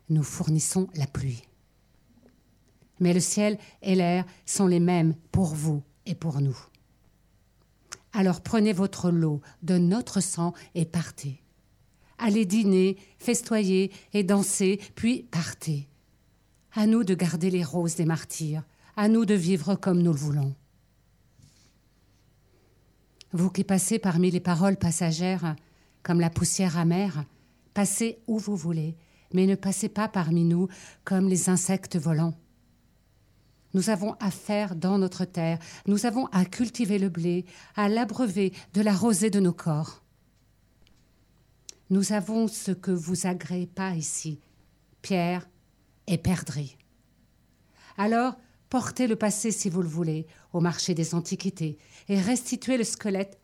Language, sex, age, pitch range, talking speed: French, female, 60-79, 155-195 Hz, 135 wpm